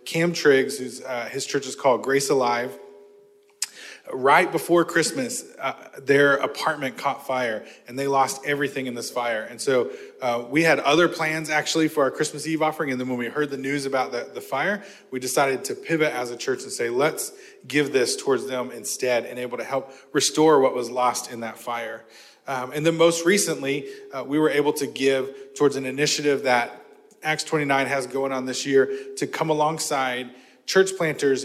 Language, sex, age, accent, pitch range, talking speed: English, male, 20-39, American, 130-165 Hz, 195 wpm